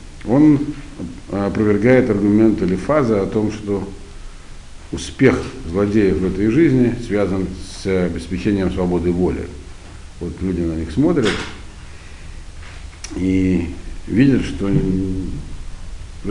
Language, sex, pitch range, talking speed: Russian, male, 85-115 Hz, 100 wpm